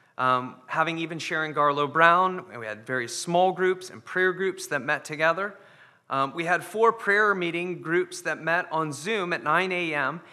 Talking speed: 180 wpm